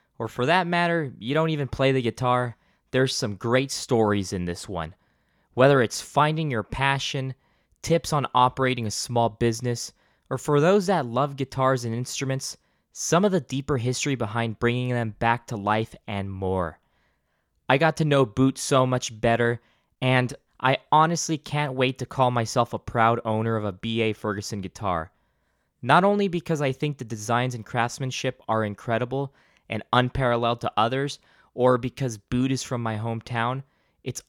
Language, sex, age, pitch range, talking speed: English, male, 20-39, 115-145 Hz, 170 wpm